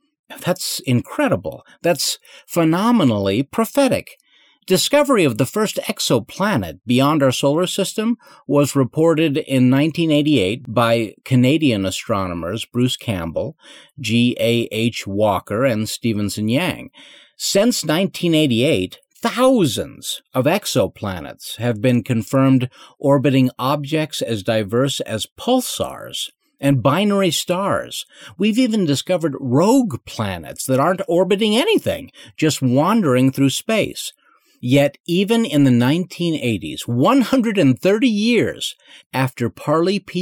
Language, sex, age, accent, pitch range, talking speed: English, male, 50-69, American, 125-195 Hz, 100 wpm